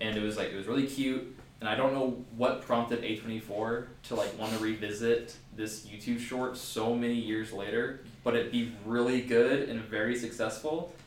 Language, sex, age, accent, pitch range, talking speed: English, male, 20-39, American, 105-120 Hz, 200 wpm